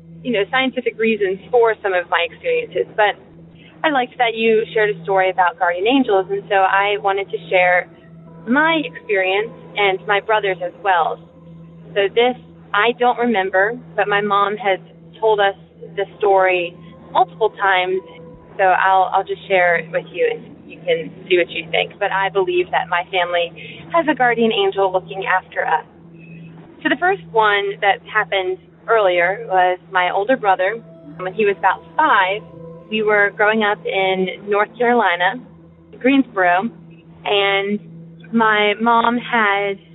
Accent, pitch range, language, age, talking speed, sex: American, 175-220 Hz, English, 20-39, 155 wpm, female